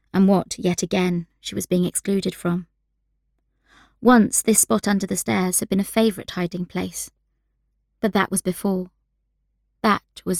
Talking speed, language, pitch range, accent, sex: 155 wpm, English, 180-210 Hz, British, female